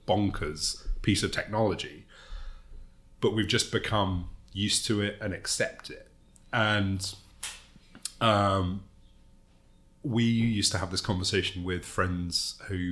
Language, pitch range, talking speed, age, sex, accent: English, 90-105 Hz, 115 wpm, 30-49, male, British